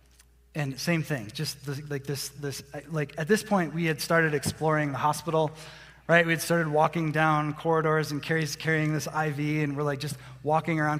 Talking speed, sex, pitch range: 190 wpm, male, 140-160 Hz